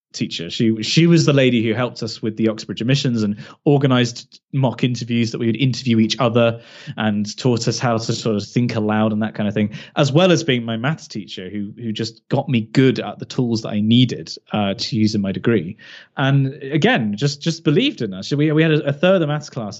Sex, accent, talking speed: male, British, 240 wpm